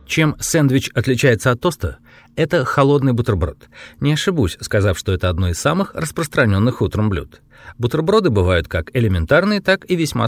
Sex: male